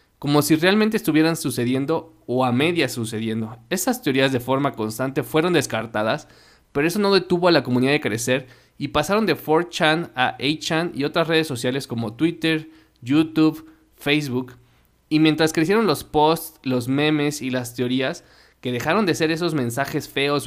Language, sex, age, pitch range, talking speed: Spanish, male, 20-39, 125-160 Hz, 165 wpm